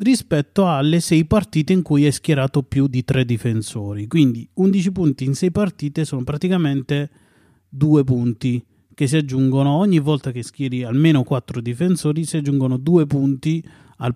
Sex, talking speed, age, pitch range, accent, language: male, 155 wpm, 30-49, 125-165 Hz, native, Italian